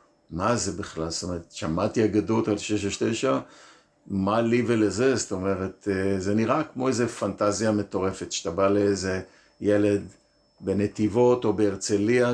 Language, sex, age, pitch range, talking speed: Hebrew, male, 50-69, 100-115 Hz, 135 wpm